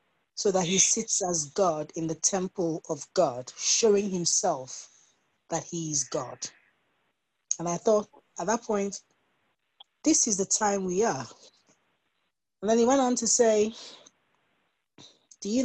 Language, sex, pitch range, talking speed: English, female, 160-205 Hz, 145 wpm